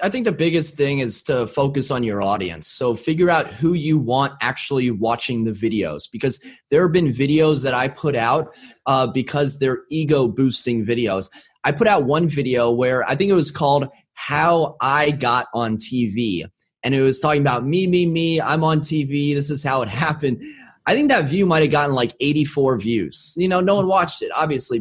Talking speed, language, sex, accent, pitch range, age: 205 wpm, English, male, American, 125-155 Hz, 20-39